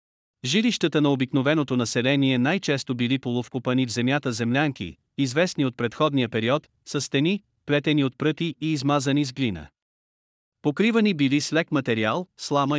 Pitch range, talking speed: 125-155 Hz, 135 wpm